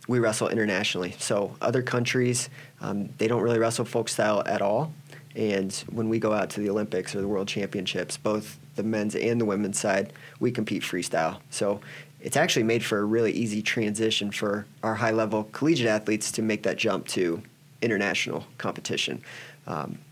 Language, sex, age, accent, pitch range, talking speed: English, male, 30-49, American, 105-125 Hz, 180 wpm